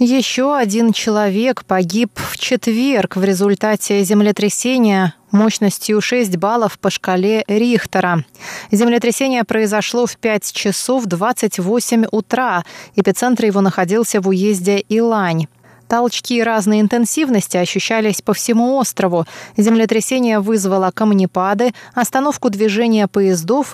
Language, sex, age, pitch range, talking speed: Russian, female, 20-39, 195-240 Hz, 105 wpm